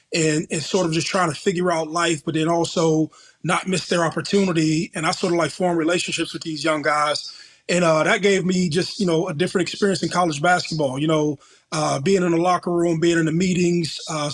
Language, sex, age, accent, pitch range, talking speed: English, male, 20-39, American, 160-185 Hz, 230 wpm